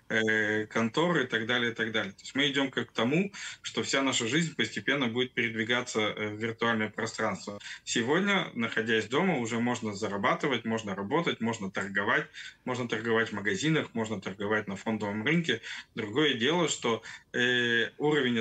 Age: 20-39